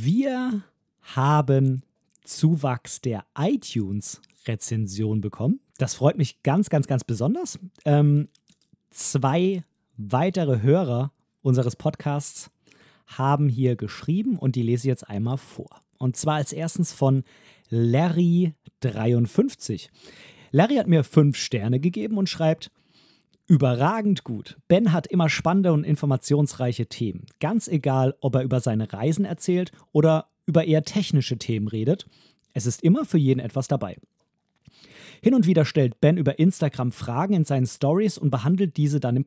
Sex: male